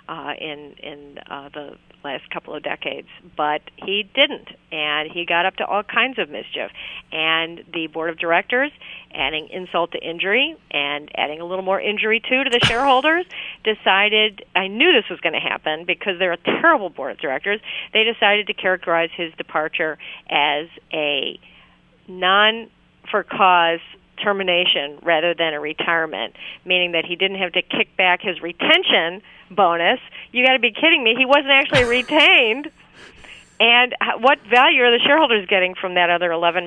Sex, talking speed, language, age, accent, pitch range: female, 165 wpm, English, 40-59, American, 165-220 Hz